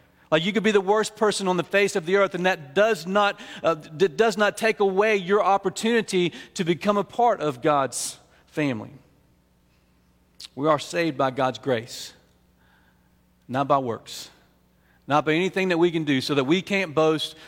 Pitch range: 125-170 Hz